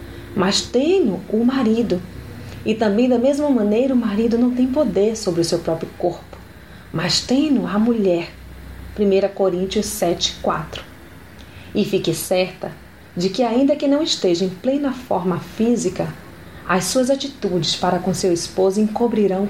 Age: 30-49